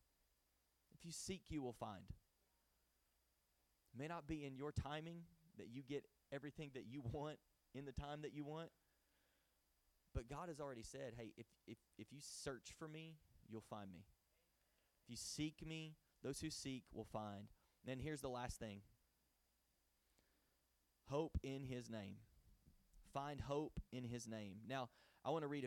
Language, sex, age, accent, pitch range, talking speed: English, male, 30-49, American, 105-140 Hz, 165 wpm